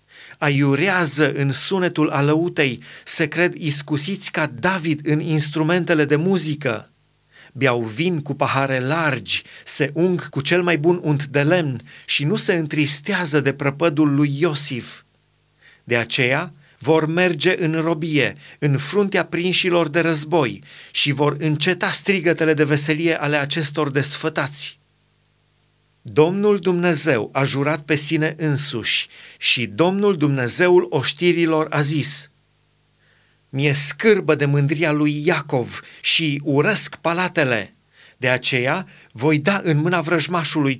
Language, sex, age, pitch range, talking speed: Romanian, male, 30-49, 145-170 Hz, 125 wpm